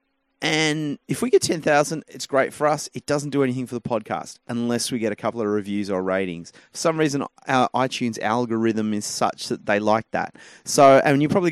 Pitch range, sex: 110-145 Hz, male